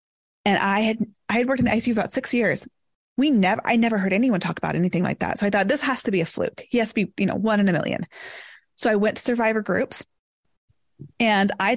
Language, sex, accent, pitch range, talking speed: English, female, American, 185-220 Hz, 255 wpm